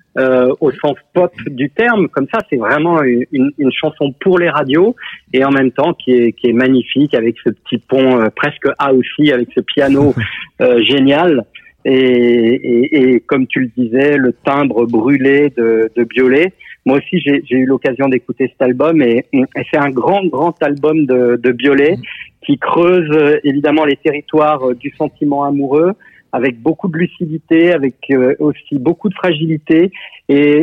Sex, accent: male, French